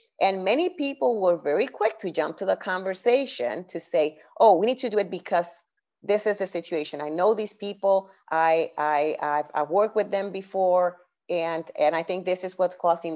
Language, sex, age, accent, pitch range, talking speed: English, female, 30-49, American, 165-210 Hz, 200 wpm